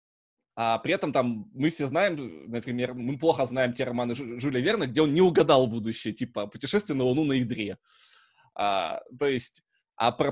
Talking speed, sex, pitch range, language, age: 185 wpm, male, 120-160 Hz, Russian, 20-39